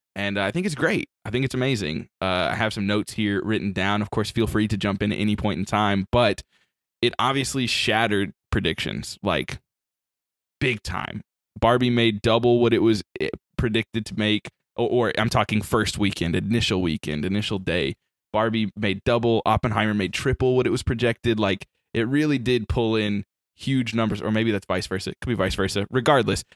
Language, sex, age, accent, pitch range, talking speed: English, male, 20-39, American, 100-115 Hz, 190 wpm